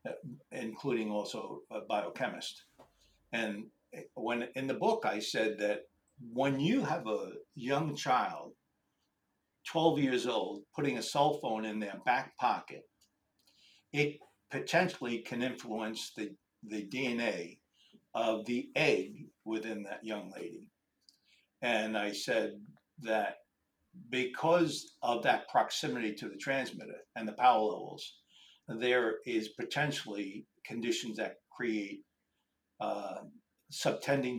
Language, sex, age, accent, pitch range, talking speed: English, male, 60-79, American, 105-135 Hz, 115 wpm